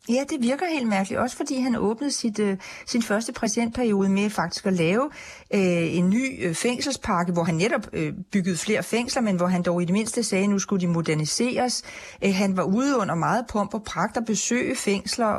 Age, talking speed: 40-59, 210 wpm